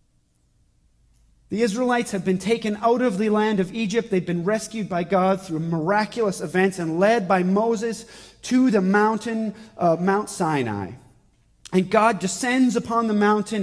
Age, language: 30-49, English